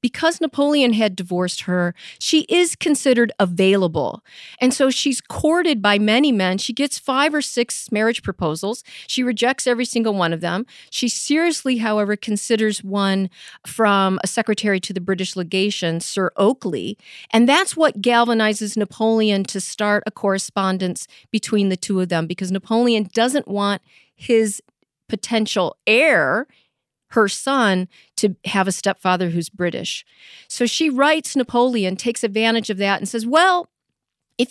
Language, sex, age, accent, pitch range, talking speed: English, female, 40-59, American, 195-255 Hz, 150 wpm